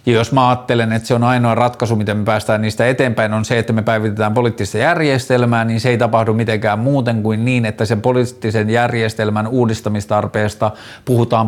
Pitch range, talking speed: 105-125 Hz, 185 wpm